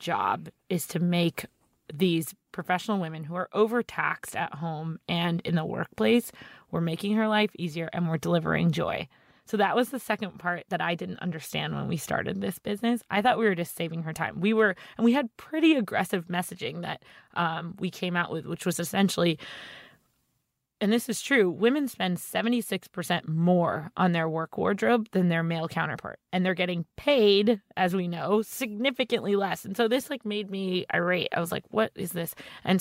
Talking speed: 190 wpm